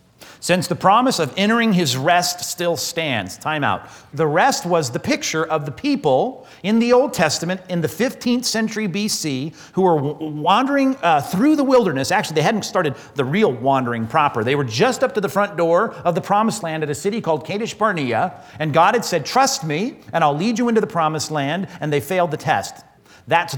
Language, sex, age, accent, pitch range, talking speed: English, male, 40-59, American, 145-195 Hz, 205 wpm